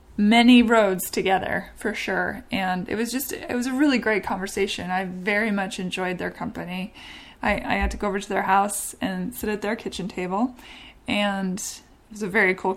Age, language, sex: 20-39, English, female